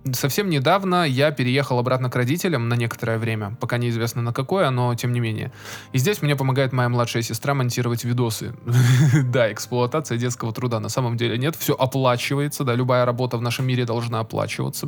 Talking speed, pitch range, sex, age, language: 180 wpm, 120-145 Hz, male, 20-39, Russian